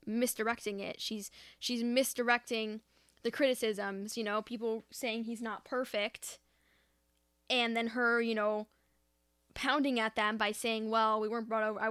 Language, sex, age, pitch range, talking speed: English, female, 10-29, 210-250 Hz, 150 wpm